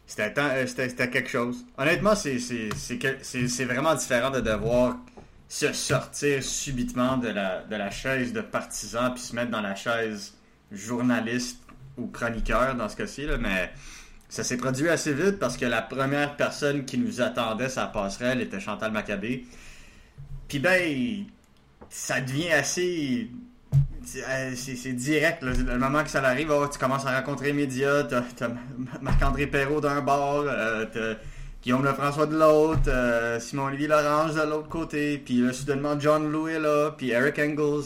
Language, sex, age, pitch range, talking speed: French, male, 30-49, 115-145 Hz, 170 wpm